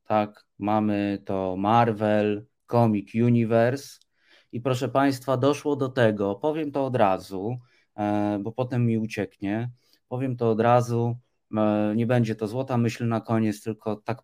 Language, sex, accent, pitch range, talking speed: Polish, male, native, 110-130 Hz, 140 wpm